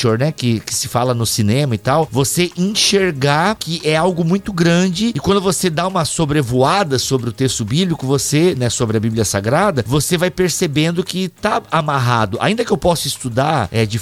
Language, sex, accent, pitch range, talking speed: Portuguese, male, Brazilian, 125-170 Hz, 195 wpm